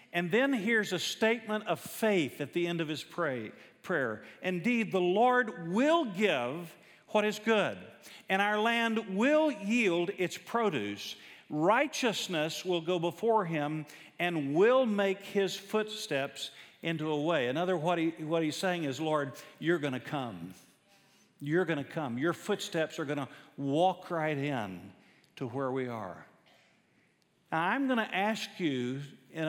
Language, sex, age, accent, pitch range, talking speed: English, male, 50-69, American, 140-205 Hz, 150 wpm